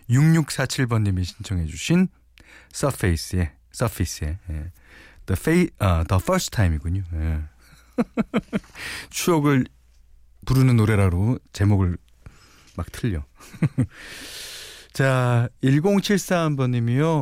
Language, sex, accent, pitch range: Korean, male, native, 85-130 Hz